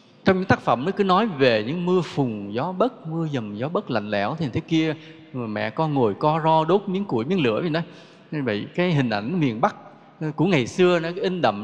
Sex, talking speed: male, 245 wpm